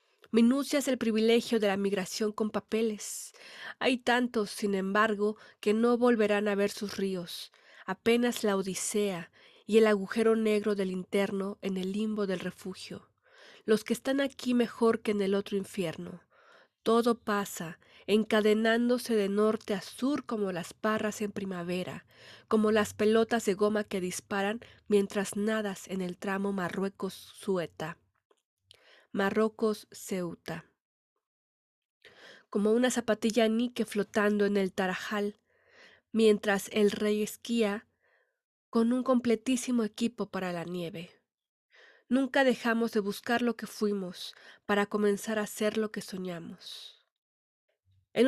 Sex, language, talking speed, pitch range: female, Spanish, 130 wpm, 200-230 Hz